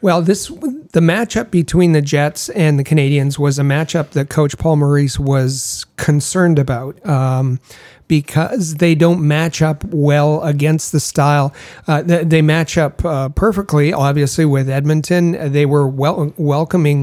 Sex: male